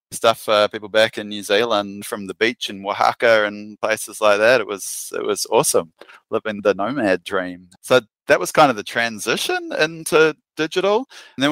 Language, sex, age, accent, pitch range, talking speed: English, male, 30-49, Australian, 95-130 Hz, 190 wpm